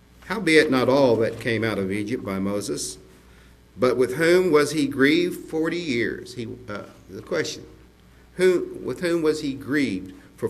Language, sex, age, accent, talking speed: English, male, 50-69, American, 165 wpm